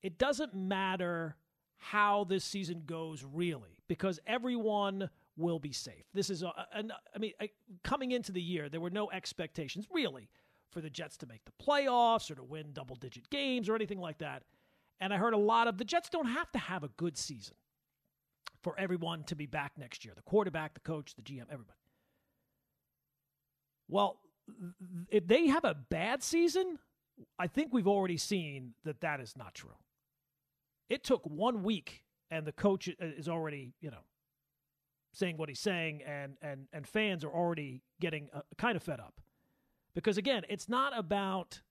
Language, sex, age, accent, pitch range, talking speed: English, male, 40-59, American, 150-205 Hz, 175 wpm